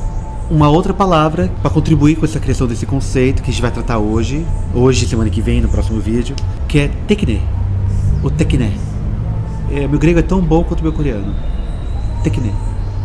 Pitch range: 100-160 Hz